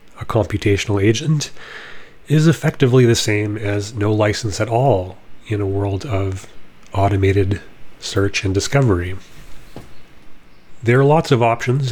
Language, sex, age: English, male, 30-49